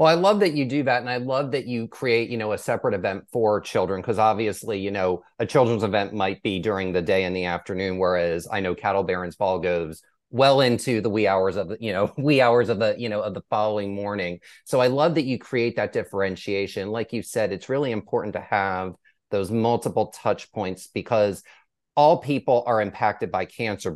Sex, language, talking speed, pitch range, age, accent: male, English, 220 wpm, 95-120 Hz, 30-49, American